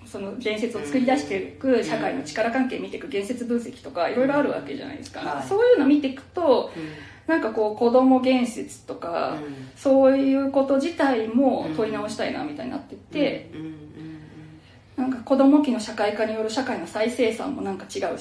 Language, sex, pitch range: Japanese, female, 215-290 Hz